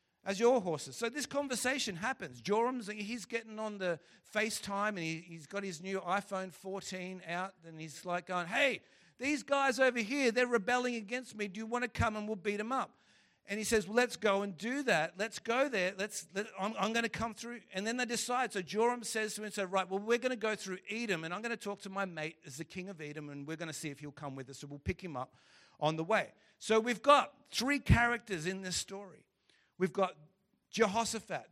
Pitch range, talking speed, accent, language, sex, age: 170-225 Hz, 240 wpm, Australian, English, male, 50-69